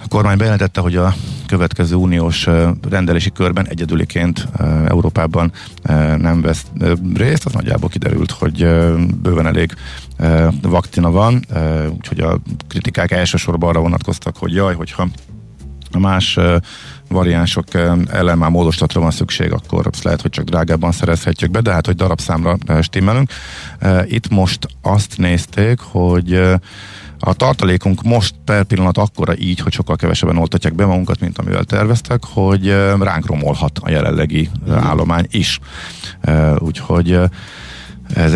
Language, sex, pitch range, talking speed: Hungarian, male, 80-95 Hz, 125 wpm